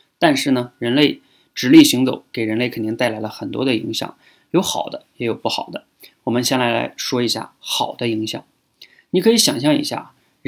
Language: Chinese